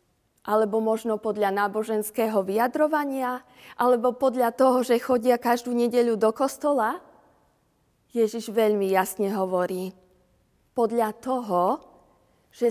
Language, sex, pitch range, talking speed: Slovak, female, 195-240 Hz, 100 wpm